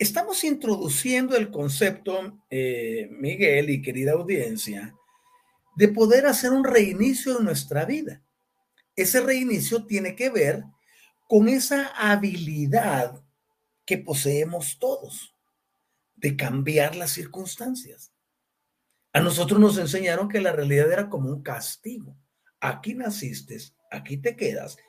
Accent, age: Mexican, 40-59